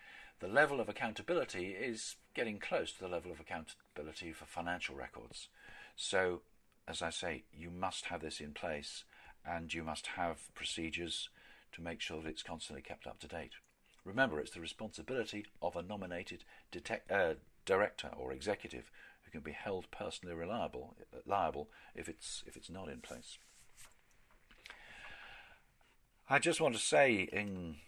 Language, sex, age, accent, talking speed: English, male, 50-69, British, 150 wpm